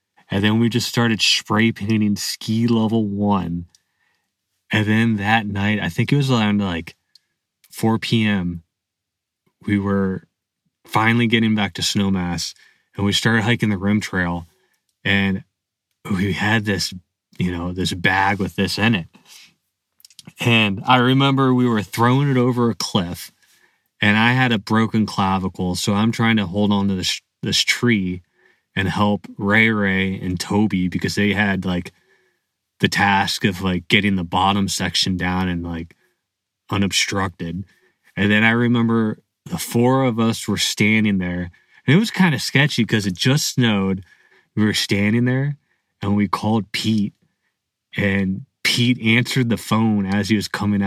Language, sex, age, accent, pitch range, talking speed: English, male, 20-39, American, 95-115 Hz, 160 wpm